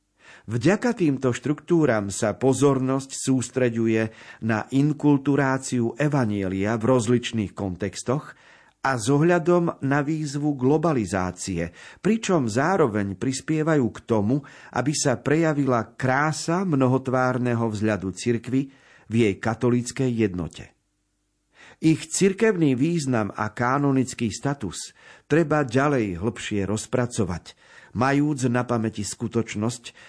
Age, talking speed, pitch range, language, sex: 50-69, 95 wpm, 110-145 Hz, Slovak, male